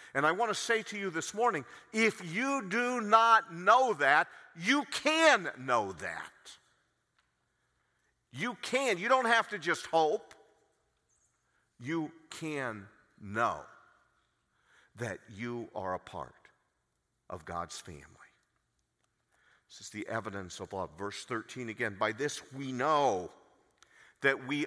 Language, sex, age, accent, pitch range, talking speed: English, male, 50-69, American, 120-185 Hz, 130 wpm